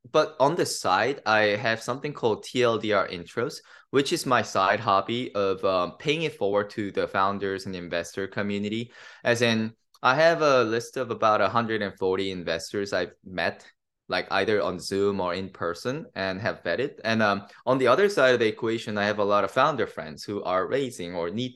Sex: male